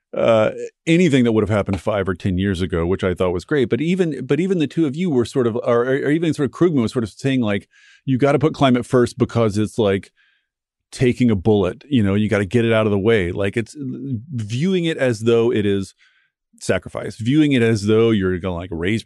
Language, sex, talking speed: English, male, 245 wpm